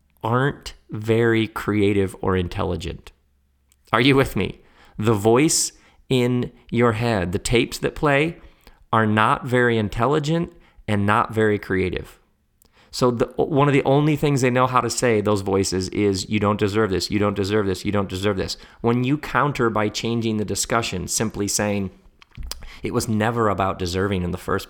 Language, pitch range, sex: English, 95-120 Hz, male